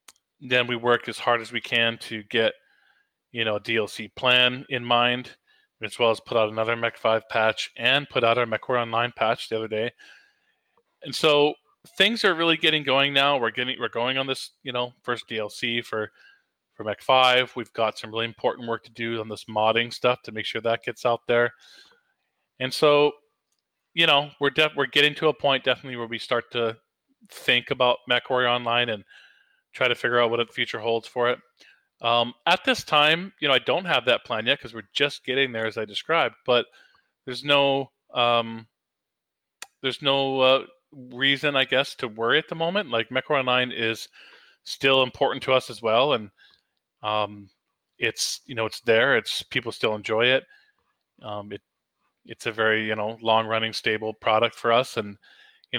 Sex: male